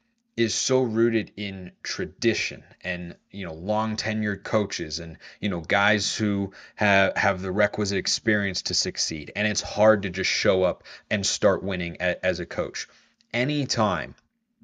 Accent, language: American, English